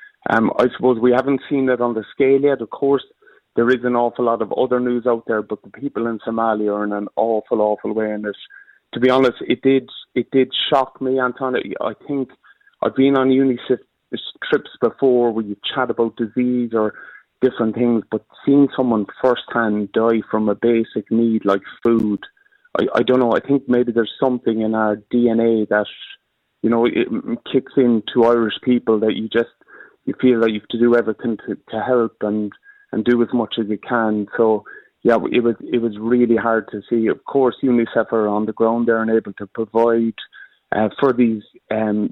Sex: male